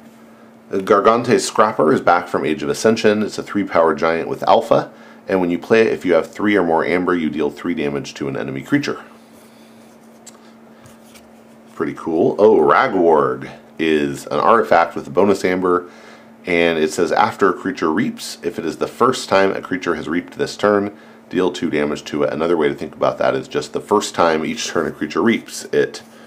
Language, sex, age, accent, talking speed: English, male, 40-59, American, 200 wpm